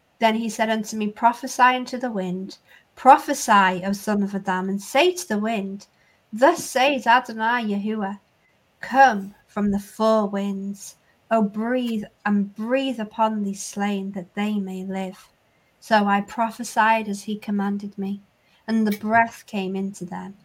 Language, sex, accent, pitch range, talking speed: English, female, British, 190-225 Hz, 155 wpm